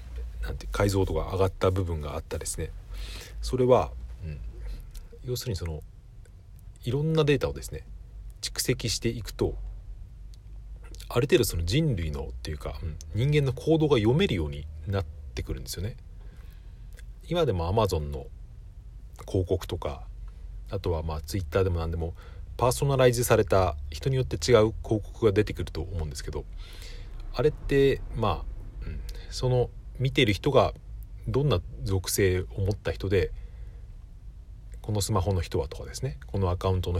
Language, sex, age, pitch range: Japanese, male, 40-59, 80-110 Hz